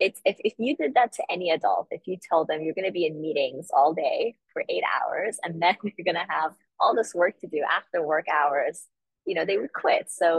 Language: English